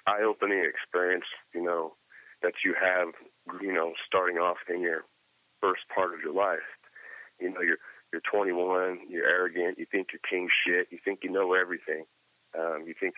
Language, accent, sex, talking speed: English, American, male, 175 wpm